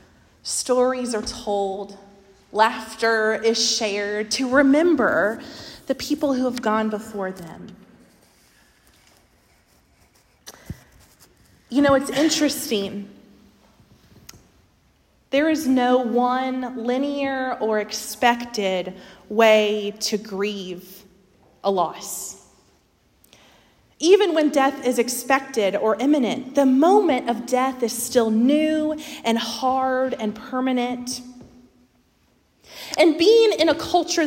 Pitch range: 225-315 Hz